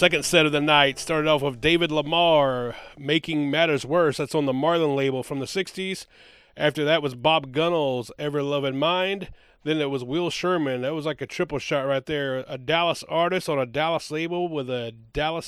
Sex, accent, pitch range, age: male, American, 135-165 Hz, 30-49